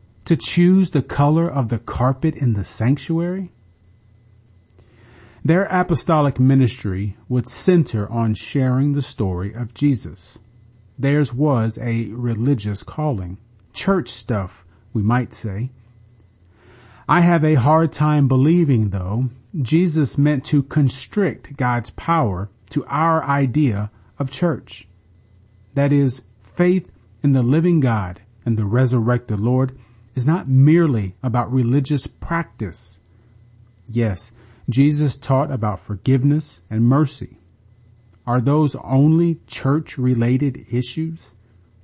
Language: English